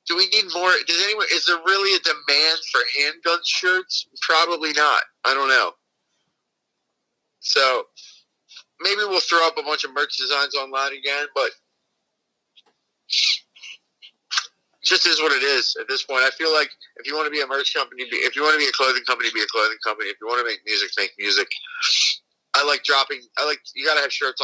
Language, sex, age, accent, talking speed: English, male, 30-49, American, 200 wpm